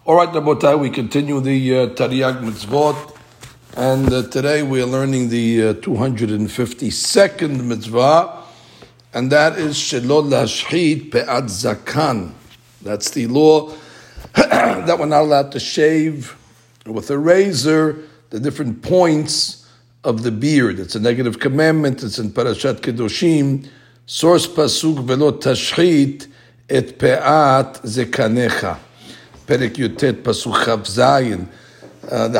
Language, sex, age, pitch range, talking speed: English, male, 60-79, 120-155 Hz, 120 wpm